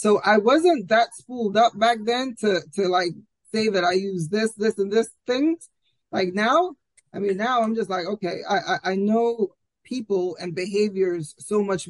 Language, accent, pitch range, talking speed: English, American, 180-220 Hz, 190 wpm